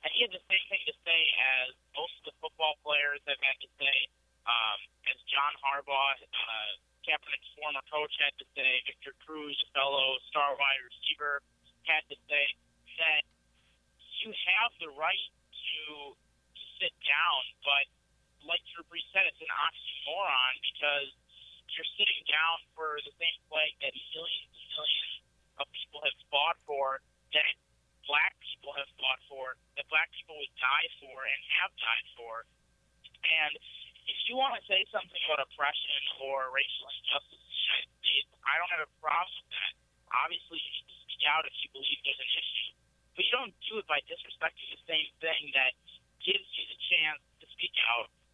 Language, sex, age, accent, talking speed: English, male, 50-69, American, 160 wpm